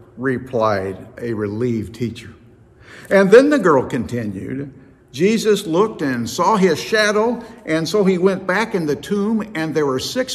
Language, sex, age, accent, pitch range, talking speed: English, male, 60-79, American, 120-160 Hz, 155 wpm